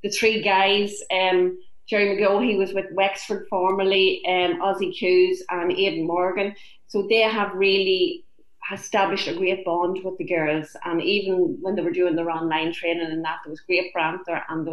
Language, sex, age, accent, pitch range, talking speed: English, female, 30-49, Irish, 170-195 Hz, 180 wpm